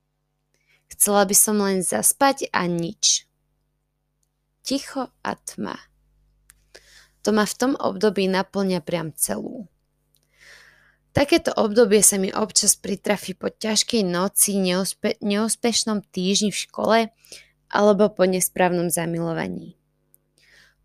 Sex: female